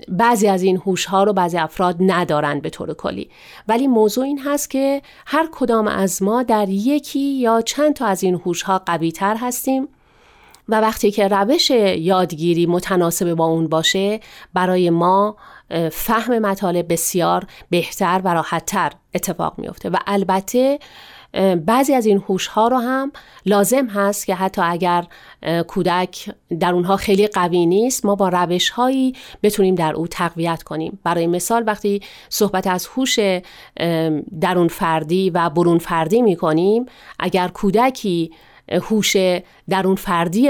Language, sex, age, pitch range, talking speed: Persian, female, 40-59, 175-220 Hz, 145 wpm